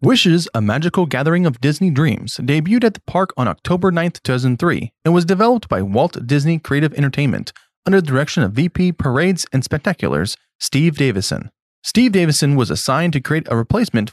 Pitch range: 130-180 Hz